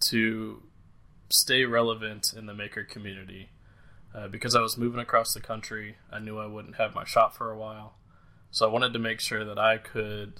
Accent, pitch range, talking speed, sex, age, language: American, 105-115 Hz, 195 wpm, male, 20-39, English